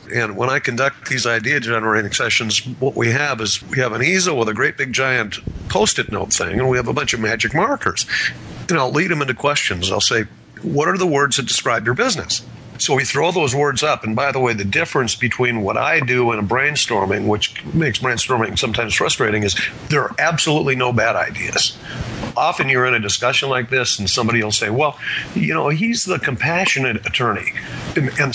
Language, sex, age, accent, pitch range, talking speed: English, male, 50-69, American, 115-145 Hz, 205 wpm